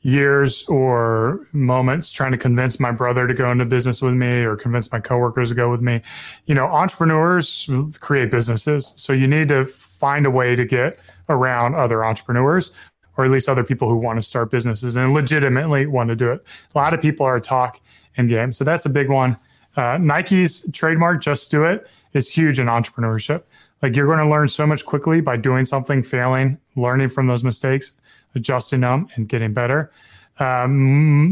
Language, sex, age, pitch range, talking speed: English, male, 30-49, 125-145 Hz, 190 wpm